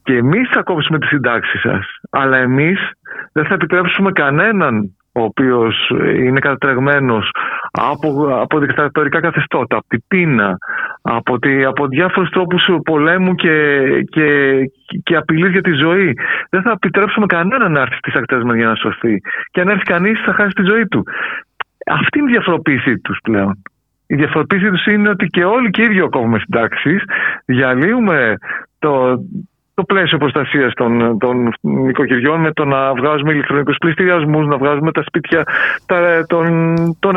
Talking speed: 155 wpm